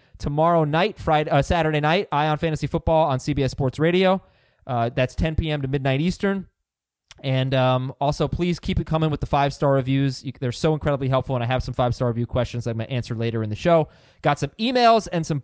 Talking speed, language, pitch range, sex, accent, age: 225 wpm, English, 135-180 Hz, male, American, 20-39